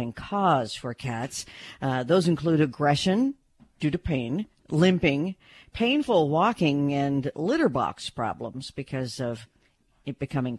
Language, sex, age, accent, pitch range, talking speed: English, female, 50-69, American, 135-180 Hz, 120 wpm